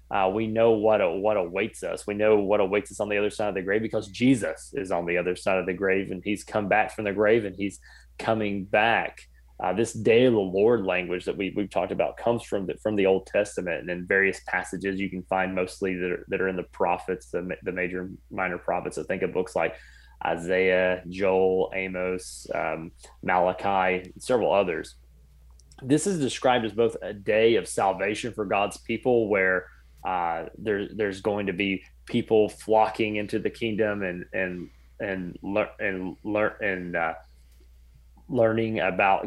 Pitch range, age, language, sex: 90-110 Hz, 20-39, English, male